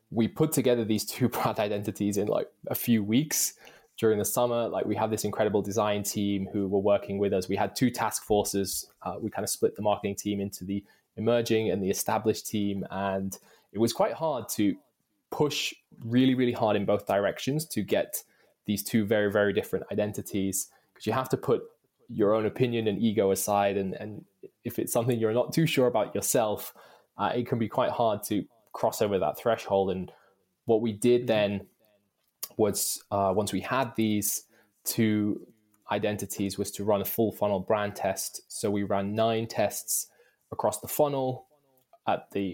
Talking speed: 185 wpm